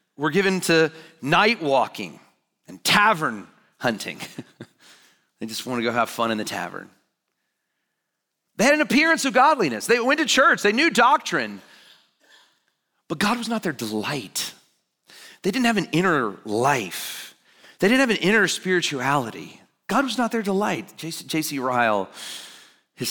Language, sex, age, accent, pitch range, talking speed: English, male, 40-59, American, 165-245 Hz, 150 wpm